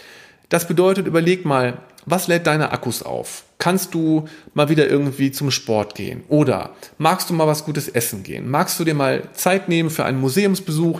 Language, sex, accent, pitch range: German, male, German, 135-180 Hz